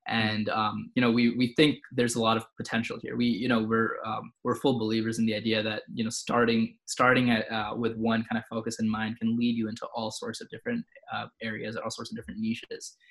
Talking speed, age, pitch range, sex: 245 wpm, 20-39, 110-120 Hz, male